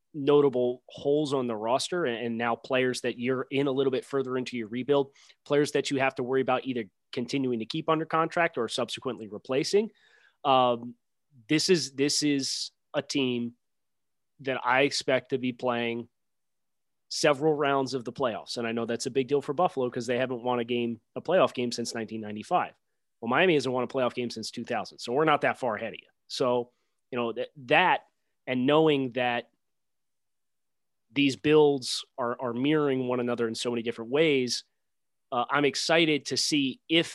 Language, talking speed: English, 185 wpm